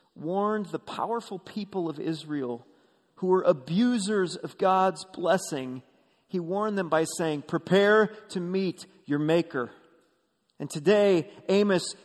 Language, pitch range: English, 160-225 Hz